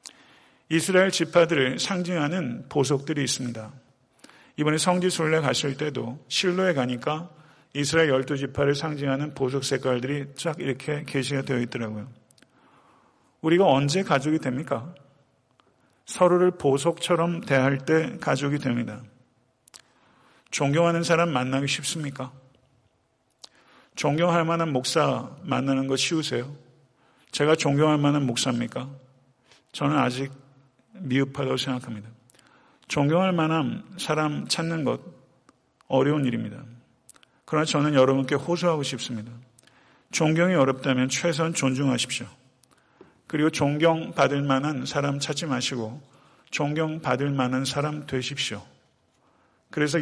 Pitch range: 130-160 Hz